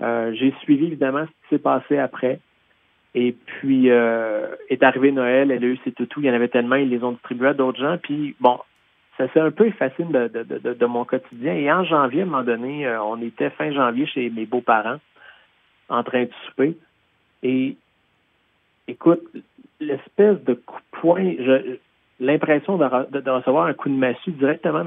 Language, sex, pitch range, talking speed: French, male, 120-145 Hz, 195 wpm